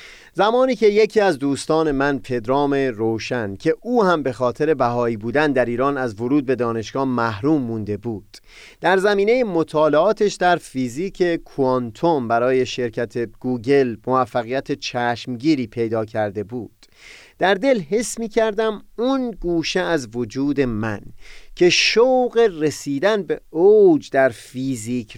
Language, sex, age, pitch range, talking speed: Persian, male, 30-49, 120-185 Hz, 130 wpm